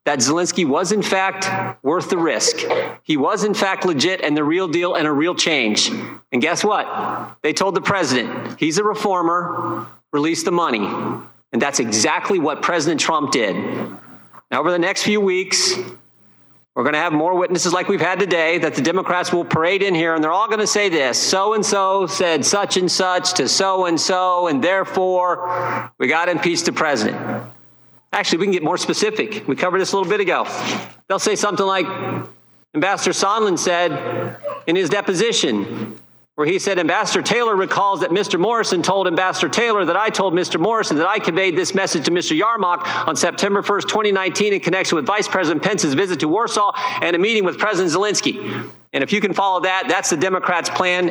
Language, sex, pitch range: English, male, 175-205 Hz